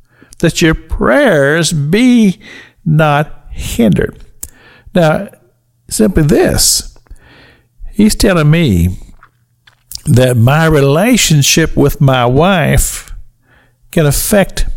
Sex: male